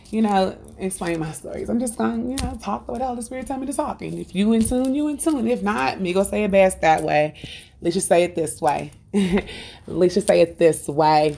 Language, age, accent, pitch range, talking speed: English, 30-49, American, 150-200 Hz, 265 wpm